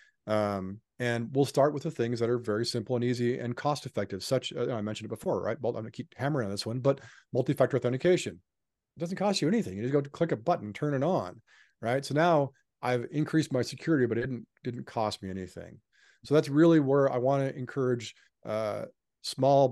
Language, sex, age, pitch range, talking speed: English, male, 40-59, 110-135 Hz, 230 wpm